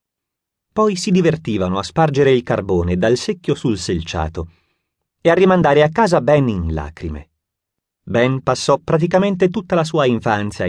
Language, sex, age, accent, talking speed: Italian, male, 30-49, native, 145 wpm